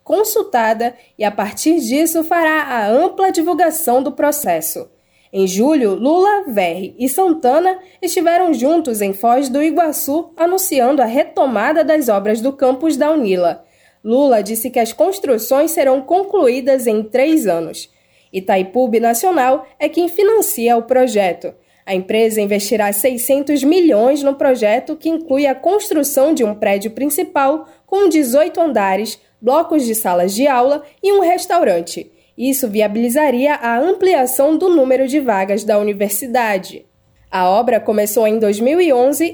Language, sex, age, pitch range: Portuguese, female, 10-29, 220-315 Hz